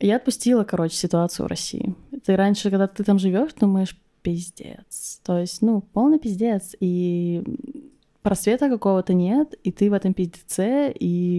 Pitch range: 175-235 Hz